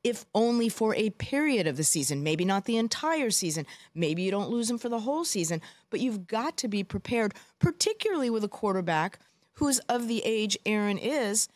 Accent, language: American, English